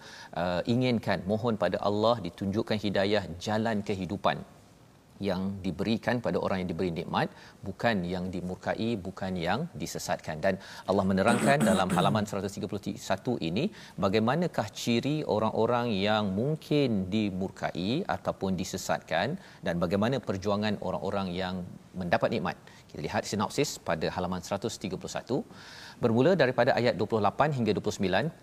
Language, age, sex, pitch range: Malayalam, 40-59, male, 95-115 Hz